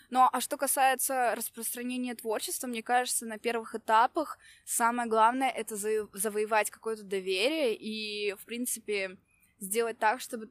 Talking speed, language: 135 wpm, Russian